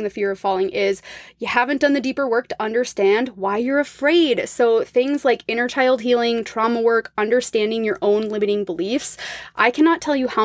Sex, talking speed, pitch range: female, 195 wpm, 200-255 Hz